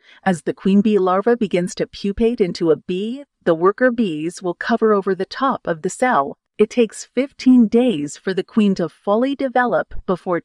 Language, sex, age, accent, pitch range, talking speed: English, female, 40-59, American, 190-235 Hz, 190 wpm